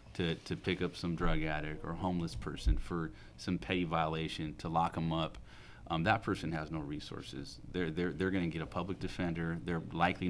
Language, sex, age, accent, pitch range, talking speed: English, male, 30-49, American, 85-100 Hz, 200 wpm